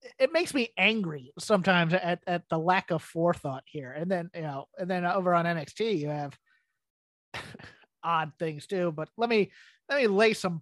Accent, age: American, 30-49